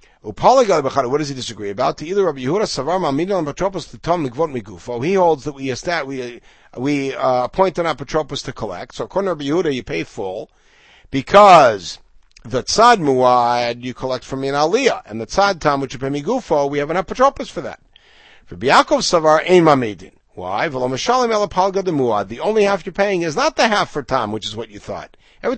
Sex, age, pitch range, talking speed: male, 50-69, 125-195 Hz, 180 wpm